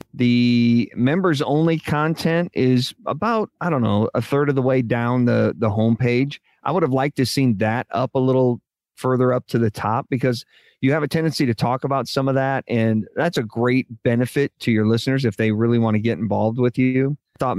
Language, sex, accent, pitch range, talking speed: English, male, American, 110-130 Hz, 215 wpm